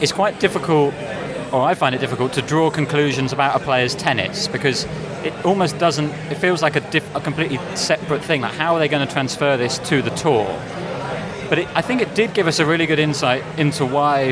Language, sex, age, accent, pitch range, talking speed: English, male, 30-49, British, 135-170 Hz, 220 wpm